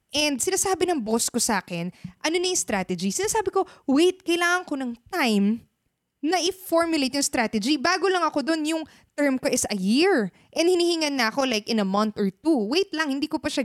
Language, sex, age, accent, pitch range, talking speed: Filipino, female, 20-39, native, 200-300 Hz, 205 wpm